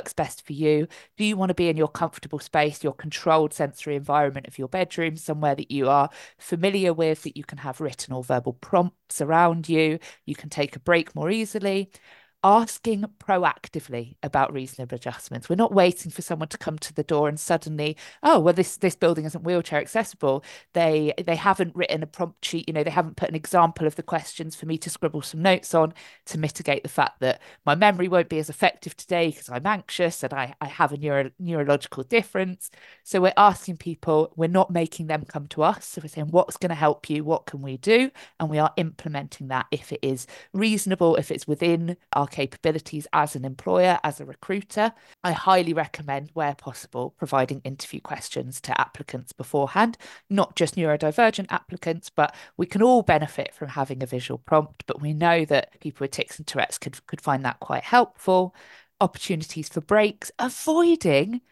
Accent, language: British, English